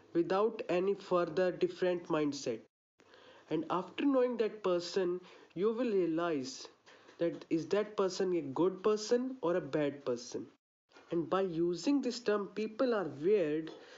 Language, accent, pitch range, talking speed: English, Indian, 165-240 Hz, 135 wpm